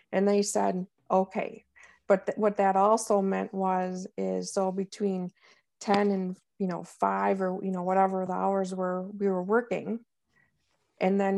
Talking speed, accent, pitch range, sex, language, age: 160 wpm, American, 185-205 Hz, female, English, 50-69